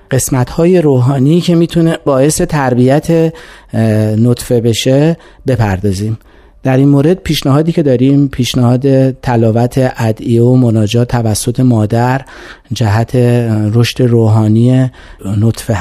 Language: Persian